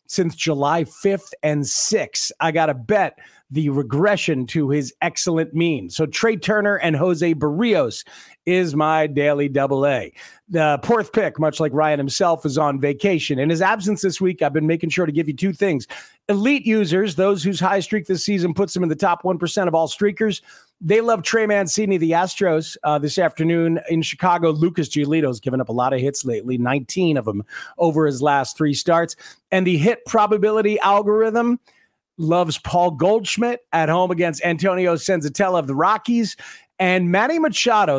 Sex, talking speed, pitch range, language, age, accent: male, 180 wpm, 155-200 Hz, English, 40-59, American